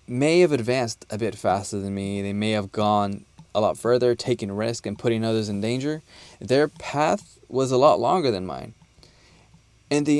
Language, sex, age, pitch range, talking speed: English, male, 20-39, 100-130 Hz, 190 wpm